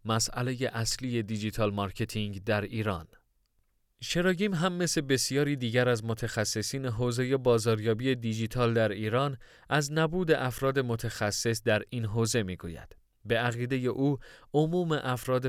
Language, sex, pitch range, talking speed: Persian, male, 110-135 Hz, 120 wpm